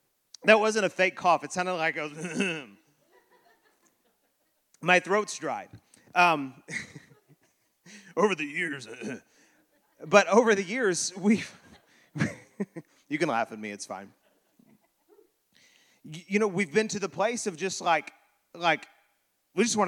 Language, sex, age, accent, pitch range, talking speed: English, male, 30-49, American, 160-220 Hz, 125 wpm